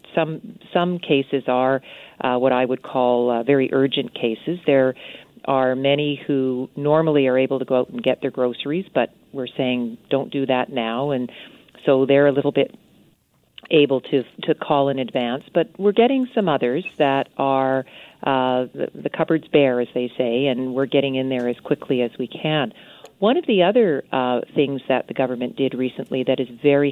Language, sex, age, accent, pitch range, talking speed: English, female, 40-59, American, 125-145 Hz, 190 wpm